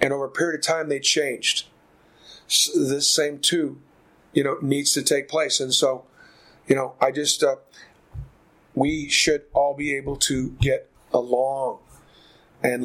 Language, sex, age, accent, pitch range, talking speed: English, male, 40-59, American, 145-175 Hz, 160 wpm